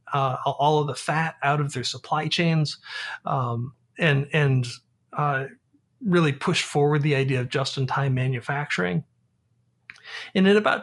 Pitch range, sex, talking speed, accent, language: 135-175 Hz, male, 140 wpm, American, English